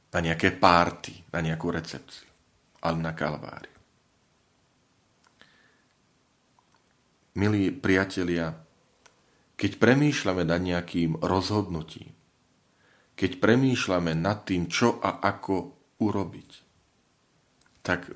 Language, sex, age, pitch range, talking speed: Slovak, male, 40-59, 85-105 Hz, 85 wpm